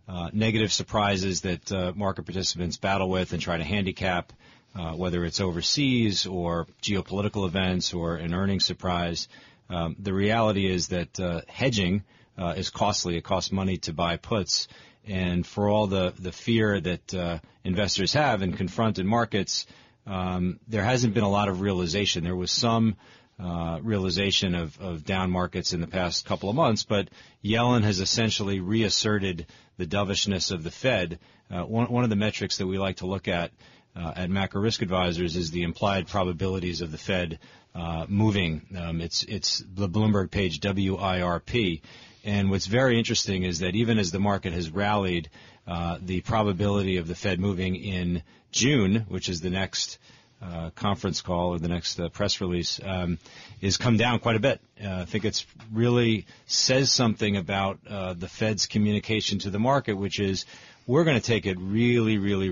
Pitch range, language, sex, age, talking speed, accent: 90-110 Hz, English, male, 40-59, 175 wpm, American